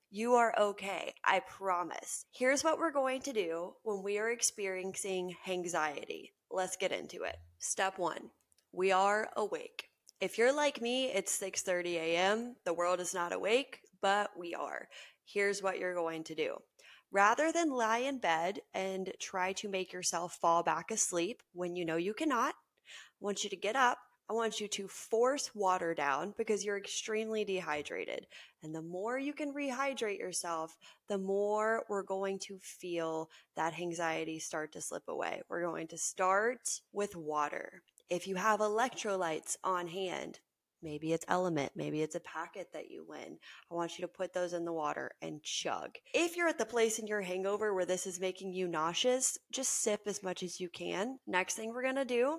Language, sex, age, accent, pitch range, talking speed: English, female, 20-39, American, 180-230 Hz, 180 wpm